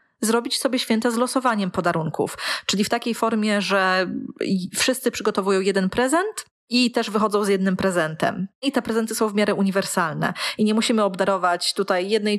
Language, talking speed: Polish, 165 wpm